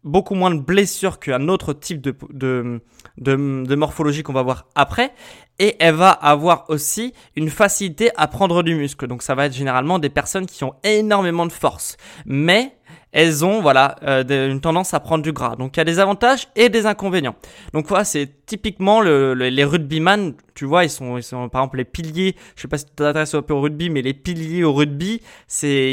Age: 20-39